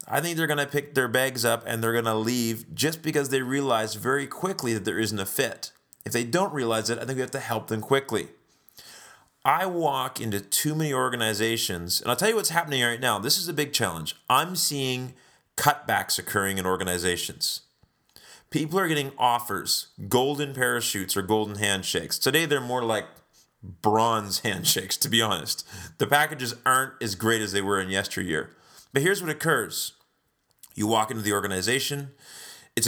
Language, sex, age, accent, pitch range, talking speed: English, male, 30-49, American, 110-145 Hz, 185 wpm